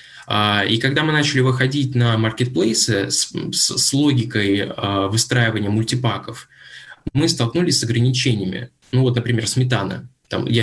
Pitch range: 110-130 Hz